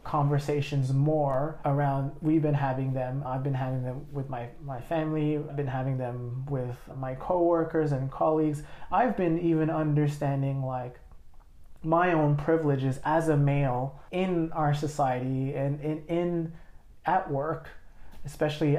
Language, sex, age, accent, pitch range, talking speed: English, male, 30-49, American, 135-155 Hz, 140 wpm